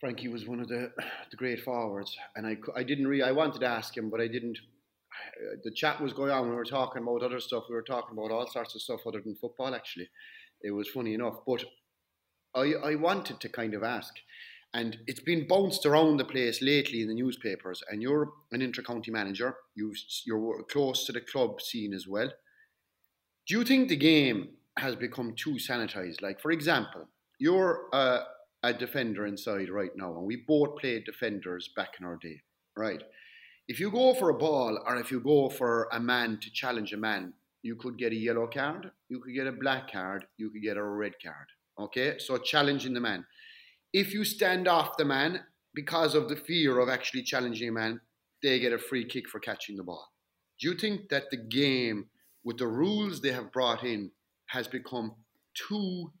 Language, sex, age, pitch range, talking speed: English, male, 30-49, 110-145 Hz, 205 wpm